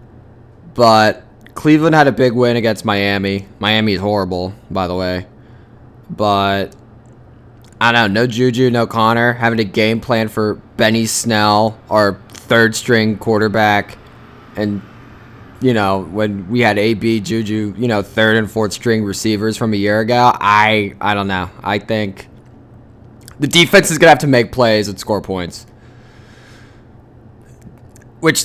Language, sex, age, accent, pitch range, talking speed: English, male, 20-39, American, 100-120 Hz, 145 wpm